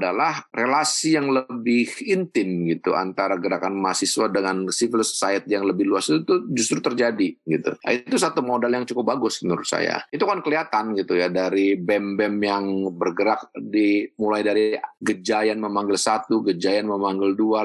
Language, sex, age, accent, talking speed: Indonesian, male, 30-49, native, 160 wpm